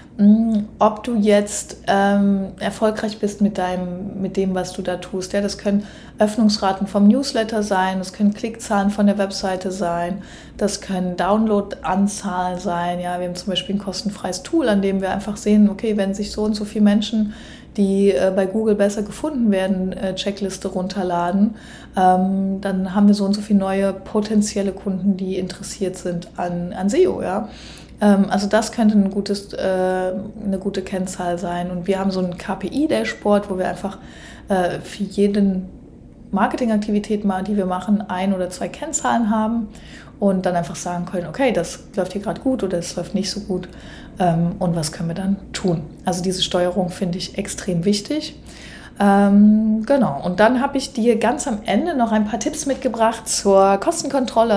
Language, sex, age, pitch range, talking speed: German, female, 30-49, 185-215 Hz, 175 wpm